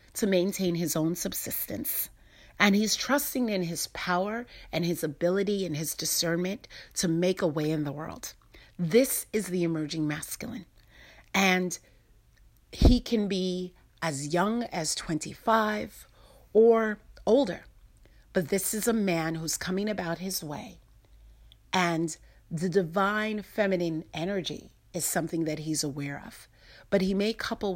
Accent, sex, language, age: American, female, English, 40-59